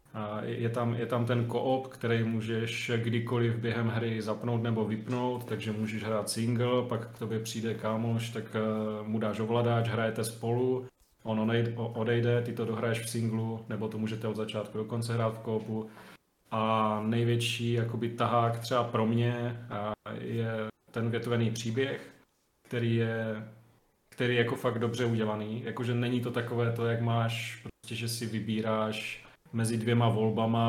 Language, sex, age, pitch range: Slovak, male, 30-49, 110-120 Hz